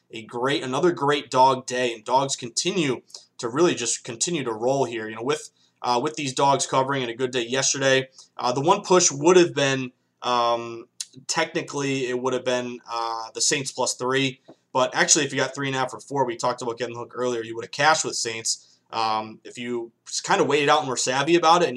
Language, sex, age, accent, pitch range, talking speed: English, male, 20-39, American, 120-145 Hz, 230 wpm